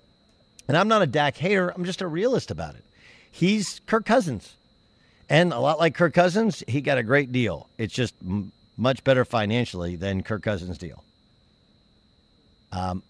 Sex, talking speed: male, 170 wpm